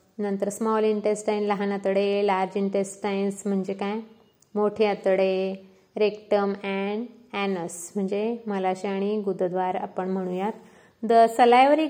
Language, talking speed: Marathi, 80 wpm